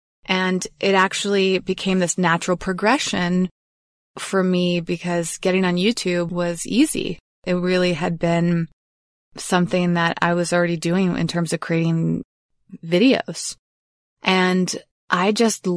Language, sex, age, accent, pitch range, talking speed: English, female, 20-39, American, 165-185 Hz, 125 wpm